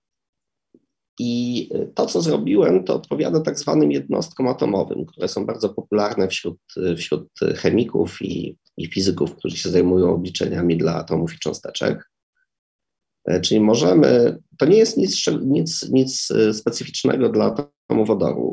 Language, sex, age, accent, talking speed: Polish, male, 30-49, native, 130 wpm